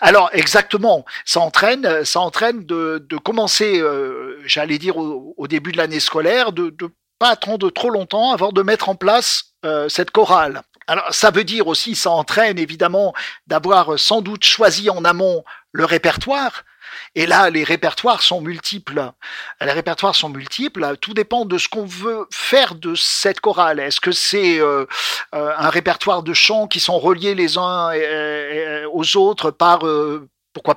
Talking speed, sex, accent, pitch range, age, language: 170 wpm, male, French, 160-215 Hz, 50-69, French